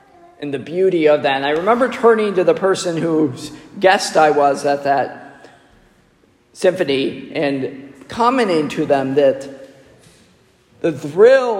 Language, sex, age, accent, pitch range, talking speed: English, male, 40-59, American, 145-200 Hz, 135 wpm